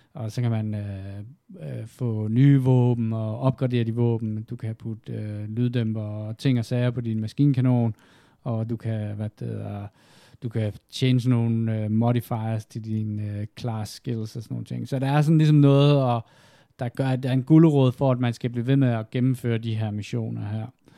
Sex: male